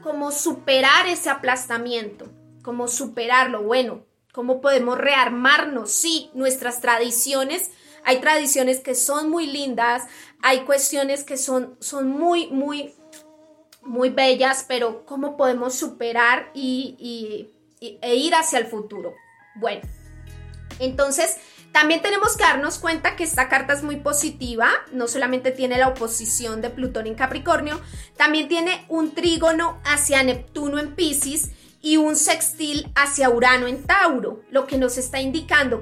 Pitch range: 250-305 Hz